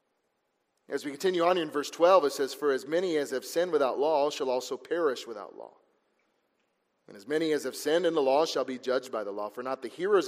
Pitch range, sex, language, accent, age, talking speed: 145-195 Hz, male, English, American, 30-49, 240 wpm